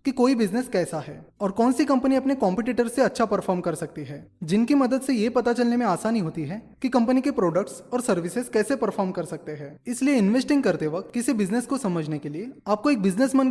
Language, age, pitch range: Hindi, 20-39, 170-250 Hz